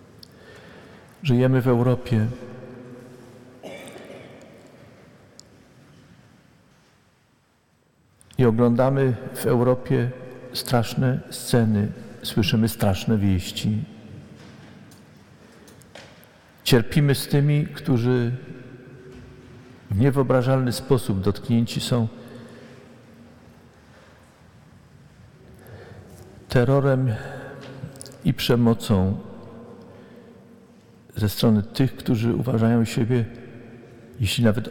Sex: male